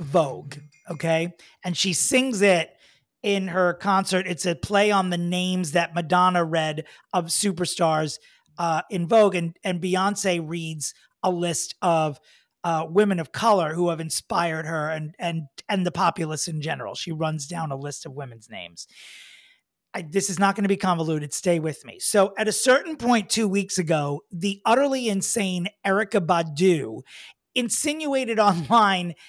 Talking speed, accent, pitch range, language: 160 wpm, American, 165-200 Hz, English